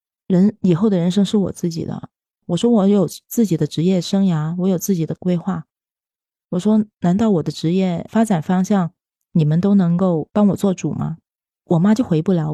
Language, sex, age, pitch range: Chinese, female, 30-49, 170-210 Hz